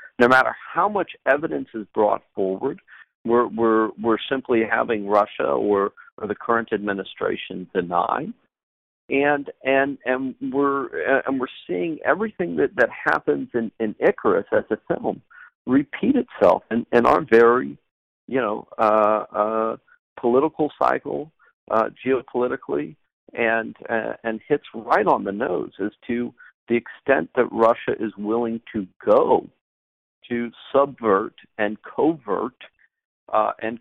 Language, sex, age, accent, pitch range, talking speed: English, male, 50-69, American, 105-135 Hz, 135 wpm